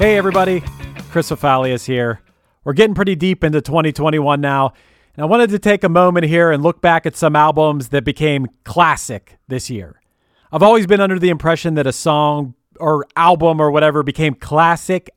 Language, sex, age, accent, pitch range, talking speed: English, male, 40-59, American, 135-180 Hz, 185 wpm